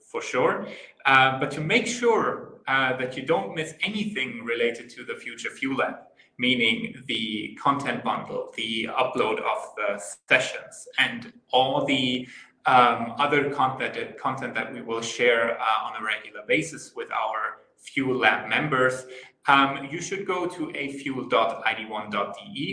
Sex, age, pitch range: male, 20-39, 120-150 Hz